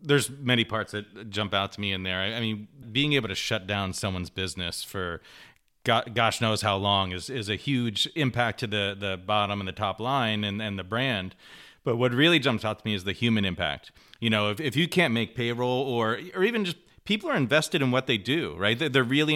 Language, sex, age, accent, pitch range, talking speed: English, male, 30-49, American, 95-125 Hz, 230 wpm